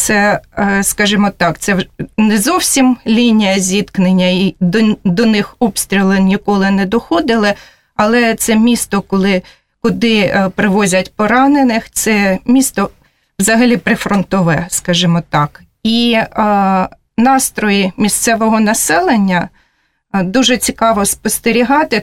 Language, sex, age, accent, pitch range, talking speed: Russian, female, 30-49, native, 195-245 Hz, 95 wpm